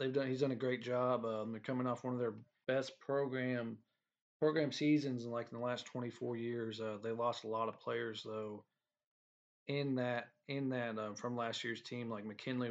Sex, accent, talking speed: male, American, 210 wpm